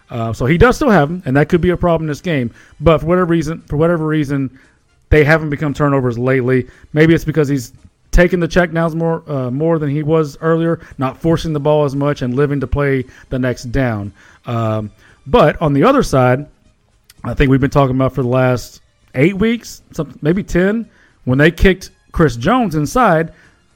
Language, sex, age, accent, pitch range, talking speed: English, male, 40-59, American, 130-165 Hz, 205 wpm